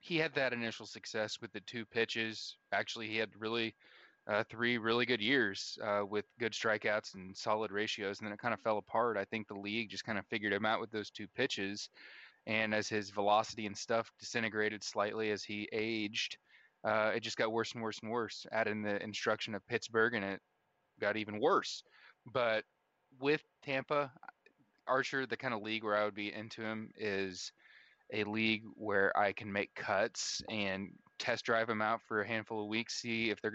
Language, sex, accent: English, male, American